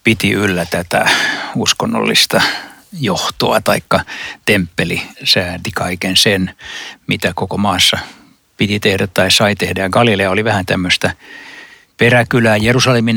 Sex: male